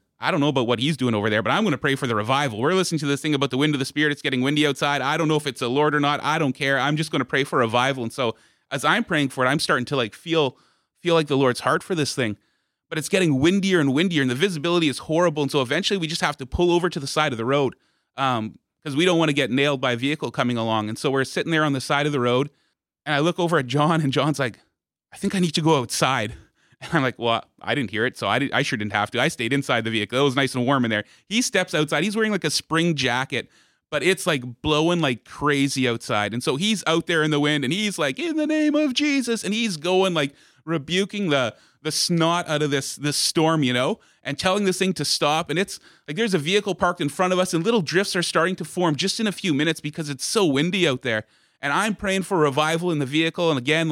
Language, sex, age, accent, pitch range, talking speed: English, male, 30-49, American, 135-175 Hz, 285 wpm